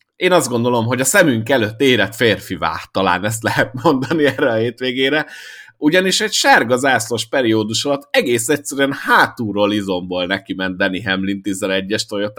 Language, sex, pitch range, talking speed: Hungarian, male, 105-145 Hz, 155 wpm